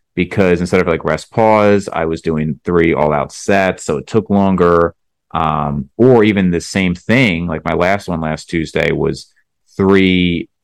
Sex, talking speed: male, 175 wpm